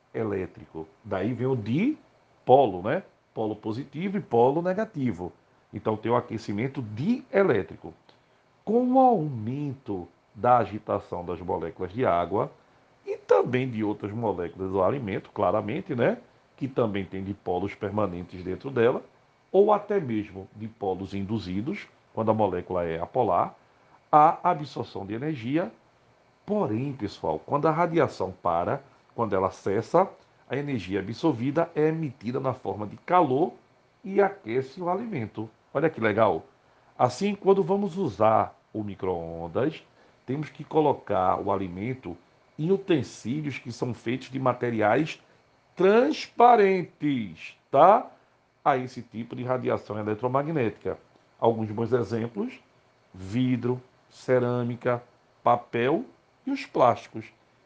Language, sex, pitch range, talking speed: Portuguese, male, 105-155 Hz, 120 wpm